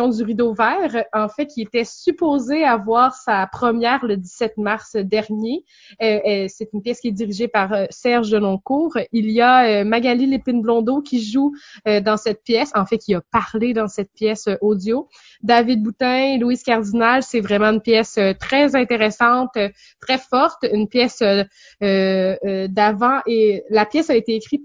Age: 20-39